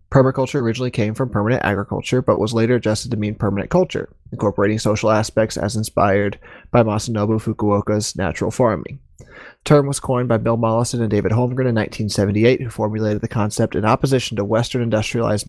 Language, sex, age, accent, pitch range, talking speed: English, male, 20-39, American, 100-120 Hz, 175 wpm